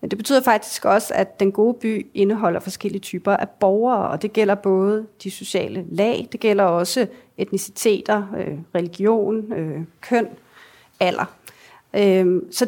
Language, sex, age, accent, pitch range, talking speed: Danish, female, 40-59, native, 190-230 Hz, 130 wpm